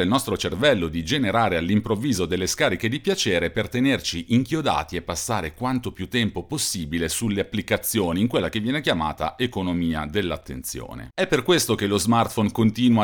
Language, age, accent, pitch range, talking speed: Italian, 40-59, native, 90-115 Hz, 160 wpm